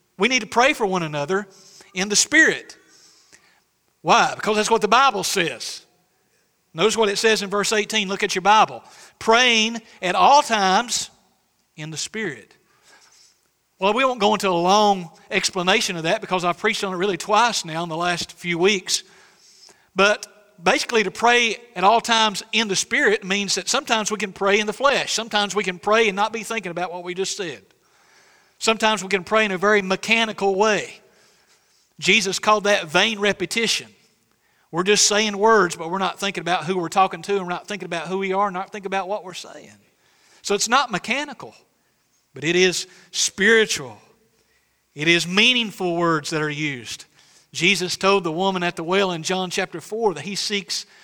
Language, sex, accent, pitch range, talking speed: English, male, American, 180-220 Hz, 190 wpm